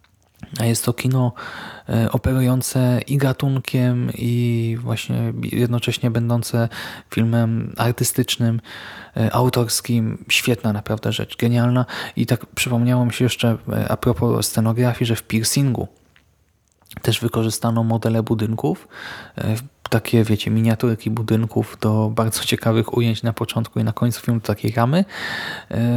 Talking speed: 110 wpm